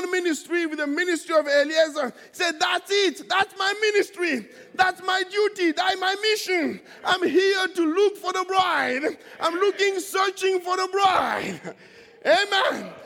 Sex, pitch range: male, 310-370 Hz